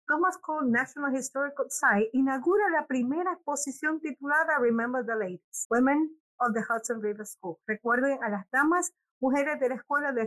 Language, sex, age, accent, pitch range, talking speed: English, female, 50-69, American, 235-300 Hz, 165 wpm